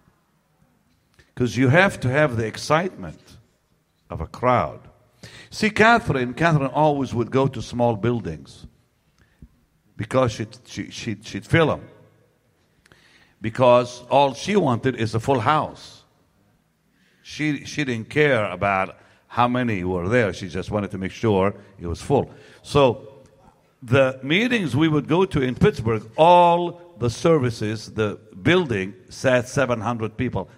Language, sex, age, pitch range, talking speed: English, male, 60-79, 105-145 Hz, 135 wpm